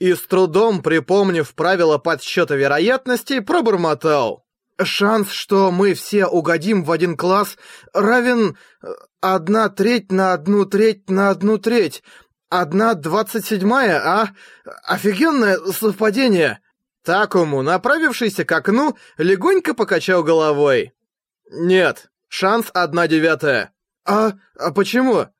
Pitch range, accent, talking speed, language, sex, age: 165-220 Hz, native, 105 wpm, Russian, male, 20-39